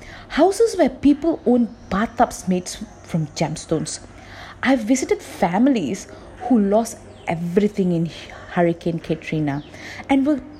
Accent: native